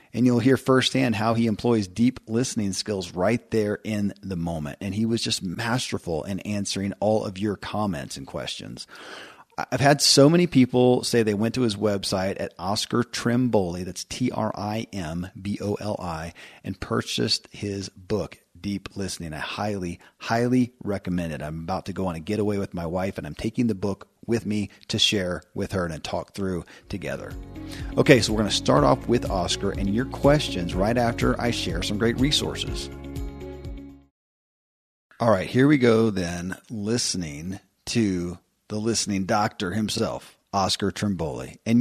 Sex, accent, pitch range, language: male, American, 95-125 Hz, English